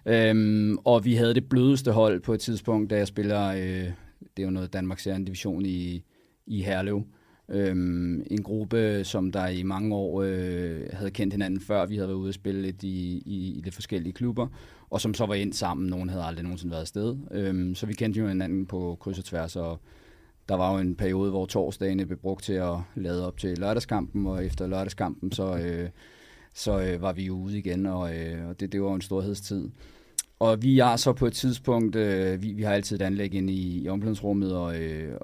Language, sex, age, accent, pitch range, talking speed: Danish, male, 30-49, native, 95-105 Hz, 220 wpm